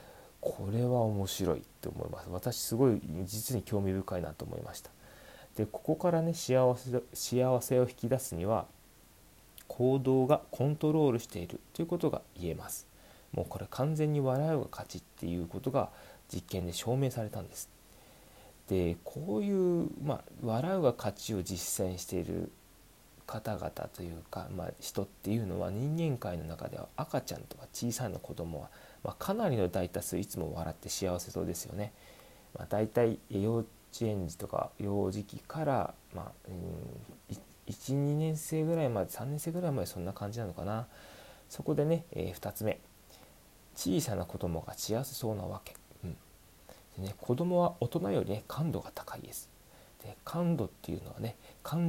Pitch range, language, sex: 95-135 Hz, Japanese, male